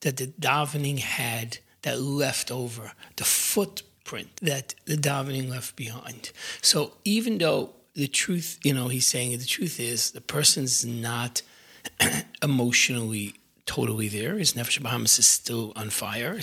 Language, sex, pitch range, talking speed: English, male, 120-150 Hz, 140 wpm